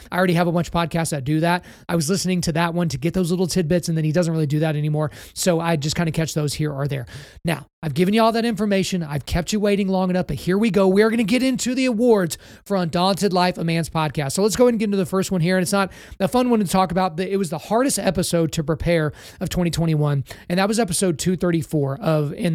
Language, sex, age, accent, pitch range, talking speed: English, male, 30-49, American, 160-185 Hz, 285 wpm